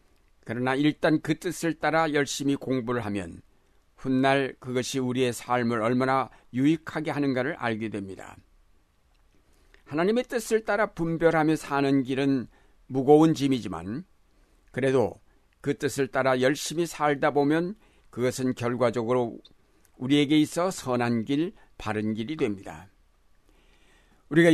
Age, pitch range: 60-79, 110-150 Hz